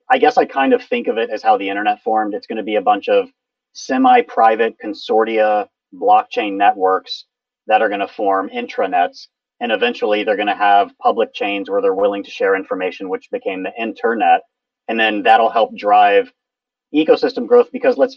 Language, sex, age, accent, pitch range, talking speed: English, male, 40-59, American, 245-255 Hz, 190 wpm